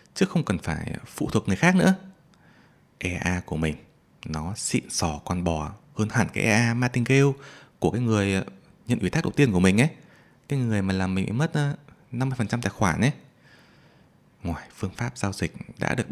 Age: 20-39